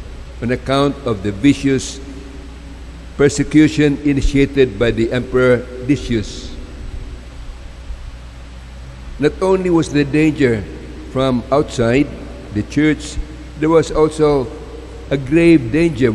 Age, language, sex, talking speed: 60-79, English, male, 95 wpm